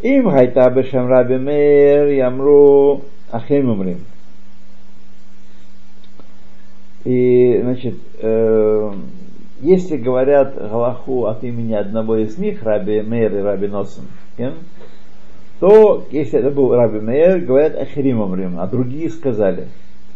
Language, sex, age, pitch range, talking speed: Russian, male, 50-69, 100-145 Hz, 95 wpm